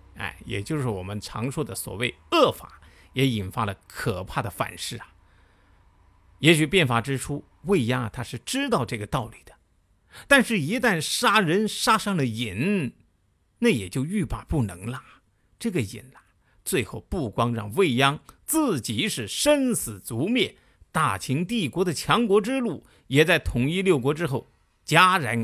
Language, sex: Chinese, male